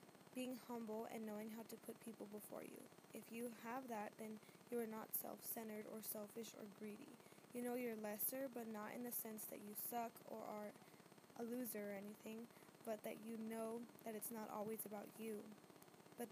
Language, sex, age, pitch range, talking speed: English, female, 10-29, 210-230 Hz, 190 wpm